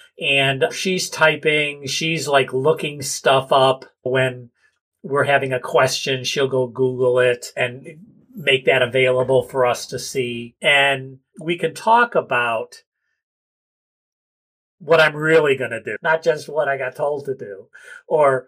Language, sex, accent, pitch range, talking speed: English, male, American, 130-200 Hz, 145 wpm